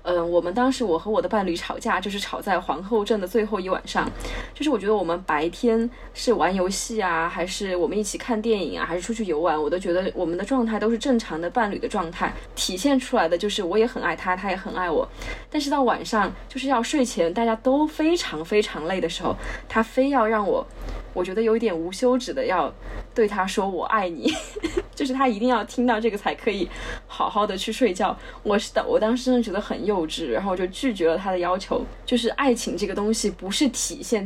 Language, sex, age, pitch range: Chinese, female, 20-39, 185-255 Hz